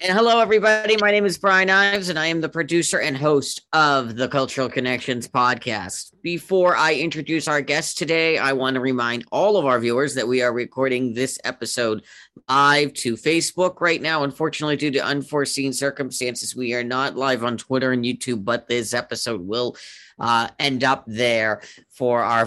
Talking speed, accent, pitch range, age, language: 180 wpm, American, 120-150 Hz, 40-59, English